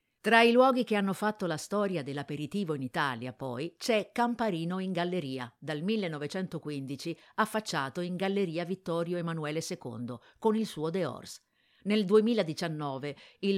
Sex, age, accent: female, 50-69, native